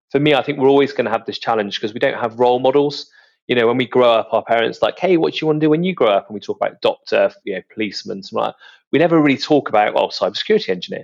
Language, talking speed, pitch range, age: English, 300 wpm, 115-155 Hz, 30-49